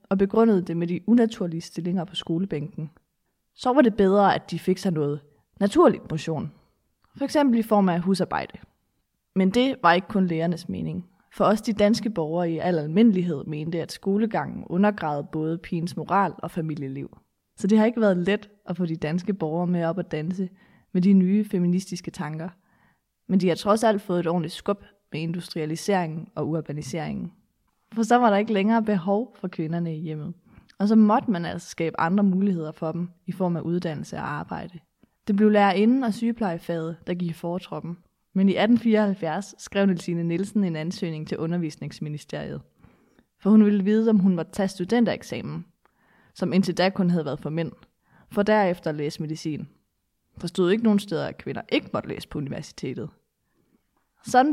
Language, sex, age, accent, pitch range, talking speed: Danish, female, 20-39, native, 165-205 Hz, 175 wpm